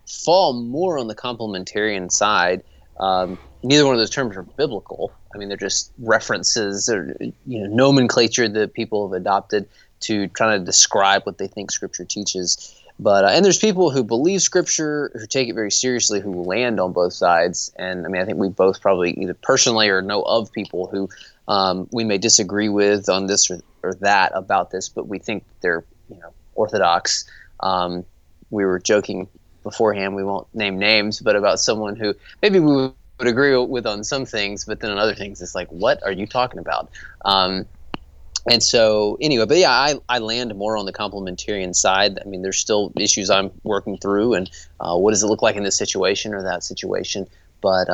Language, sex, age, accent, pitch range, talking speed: English, male, 20-39, American, 95-115 Hz, 195 wpm